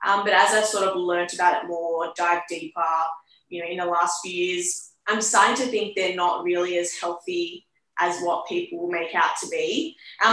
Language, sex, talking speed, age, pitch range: English, female, 210 wpm, 10-29, 175-215 Hz